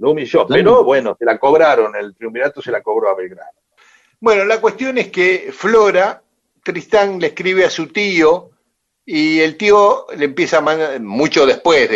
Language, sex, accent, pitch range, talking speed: Spanish, male, Argentinian, 130-220 Hz, 175 wpm